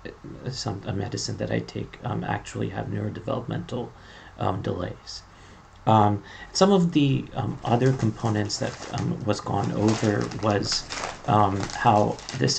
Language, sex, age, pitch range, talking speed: English, male, 40-59, 100-120 Hz, 135 wpm